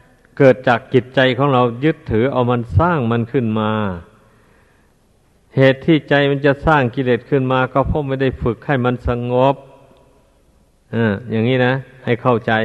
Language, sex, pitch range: Thai, male, 115-135 Hz